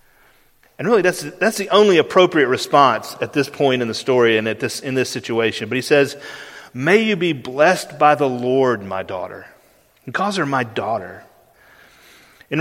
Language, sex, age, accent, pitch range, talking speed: English, male, 40-59, American, 130-185 Hz, 180 wpm